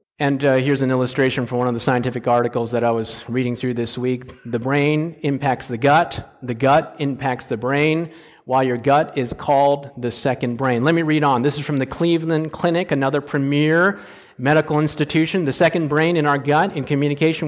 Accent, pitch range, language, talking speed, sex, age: American, 130-165 Hz, English, 200 wpm, male, 40-59